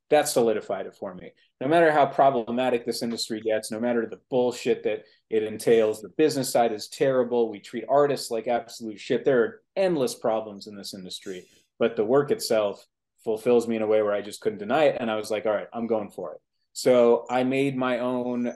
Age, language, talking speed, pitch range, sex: 20-39, English, 215 wpm, 110-135 Hz, male